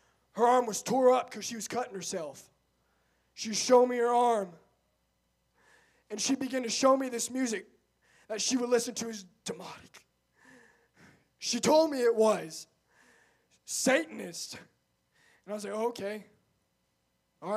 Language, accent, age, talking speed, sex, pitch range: English, American, 20-39, 140 wpm, male, 195-315 Hz